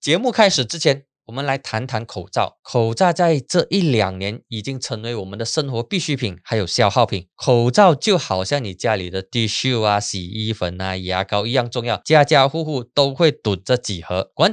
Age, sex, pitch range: 20-39, male, 115-165 Hz